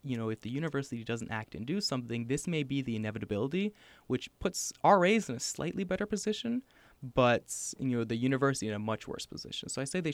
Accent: American